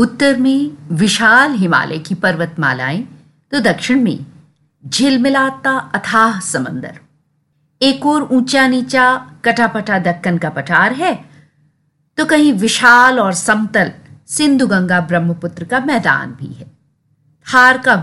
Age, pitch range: 50-69, 165-260 Hz